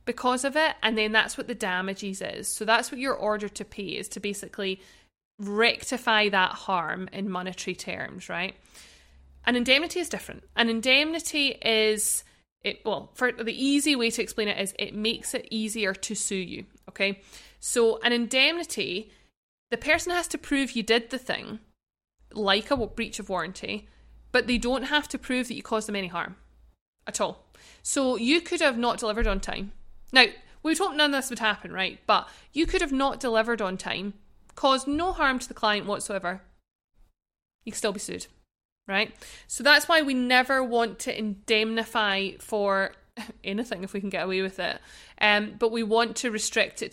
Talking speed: 185 wpm